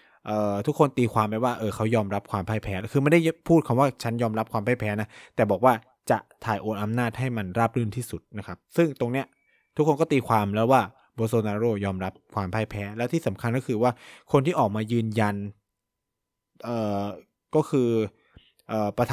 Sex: male